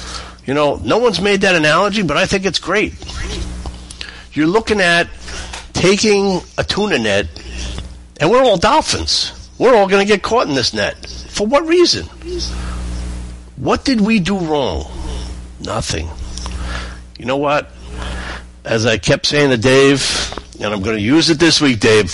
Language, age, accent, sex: English, 50-69, American, male